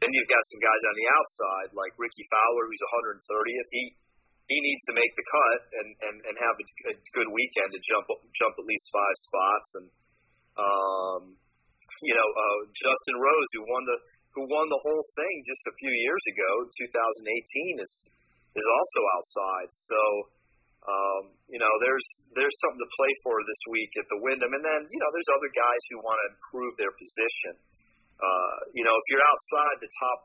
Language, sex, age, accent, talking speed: English, male, 30-49, American, 190 wpm